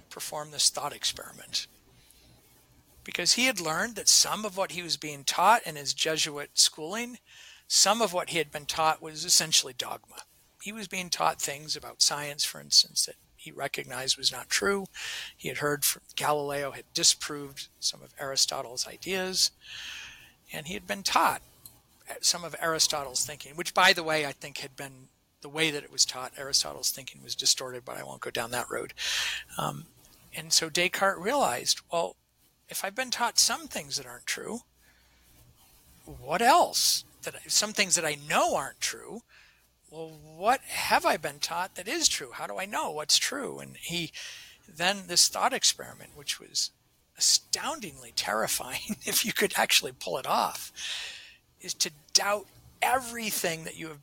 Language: English